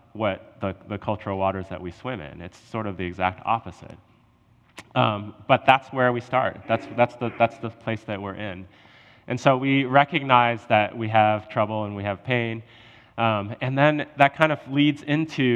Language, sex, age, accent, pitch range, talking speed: English, male, 20-39, American, 105-135 Hz, 195 wpm